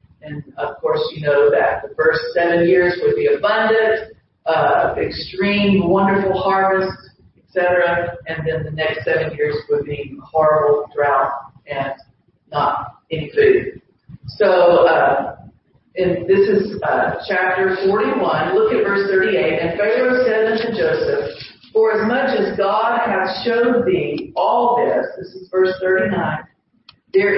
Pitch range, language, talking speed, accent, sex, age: 175-240 Hz, English, 140 wpm, American, female, 40-59